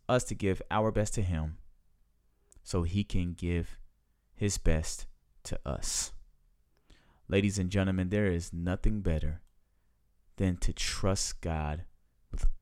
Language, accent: English, American